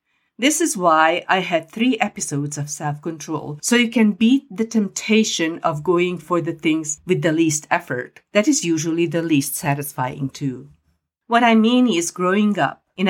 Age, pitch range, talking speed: 50-69, 155-205 Hz, 175 wpm